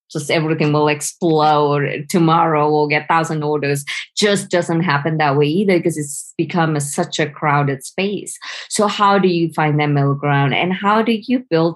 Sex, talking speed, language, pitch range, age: female, 185 wpm, English, 150-175 Hz, 20-39